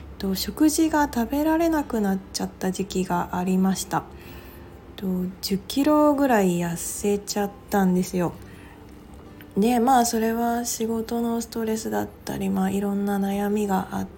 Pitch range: 175-240 Hz